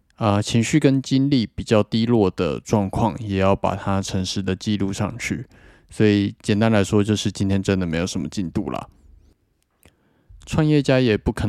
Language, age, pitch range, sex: Chinese, 20-39, 95-110 Hz, male